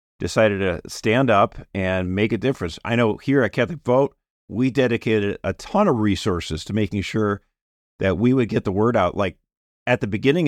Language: English